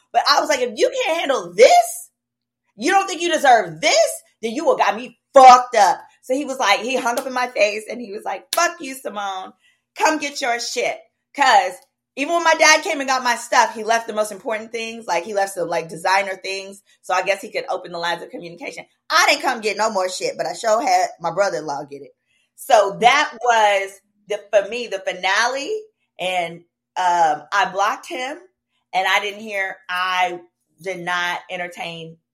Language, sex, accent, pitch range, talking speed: English, female, American, 165-235 Hz, 210 wpm